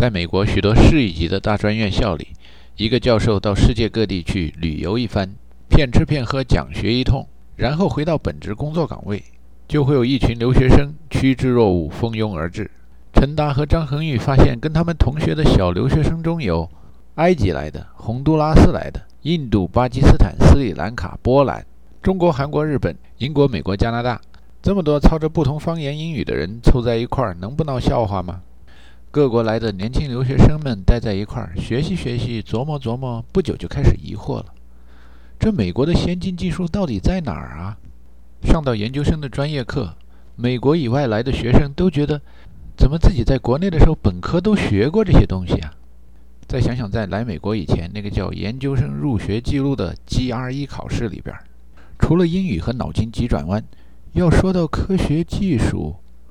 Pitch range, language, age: 90-140 Hz, Chinese, 50-69